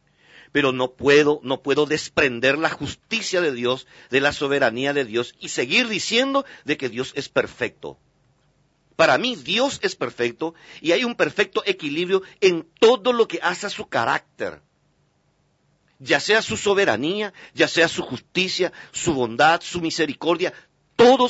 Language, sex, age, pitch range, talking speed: Spanish, male, 50-69, 160-250 Hz, 150 wpm